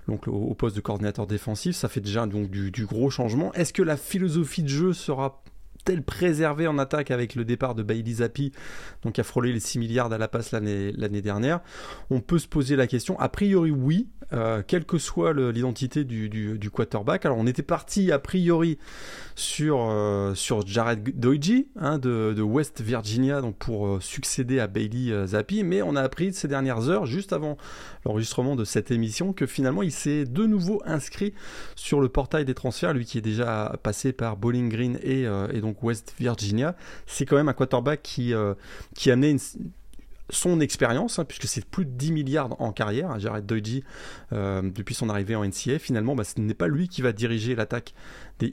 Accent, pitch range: French, 110-145 Hz